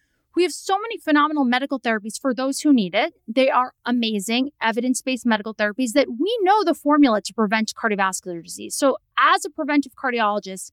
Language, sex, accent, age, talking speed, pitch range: English, female, American, 30-49, 180 wpm, 225-285 Hz